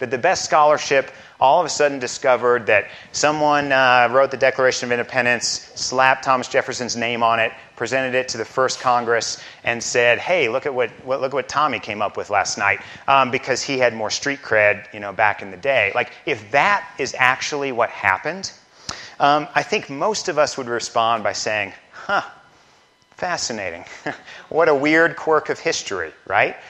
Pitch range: 115-145 Hz